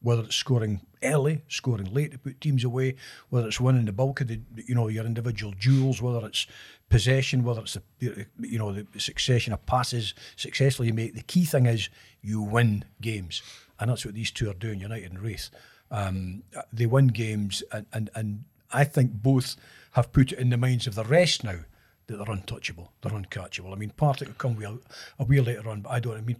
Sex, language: male, English